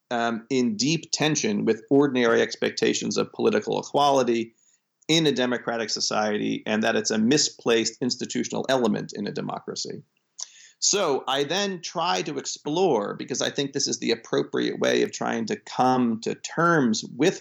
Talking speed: 155 wpm